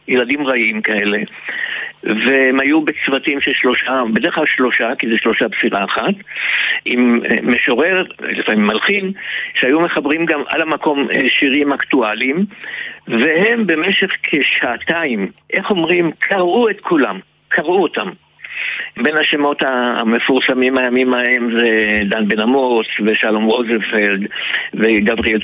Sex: male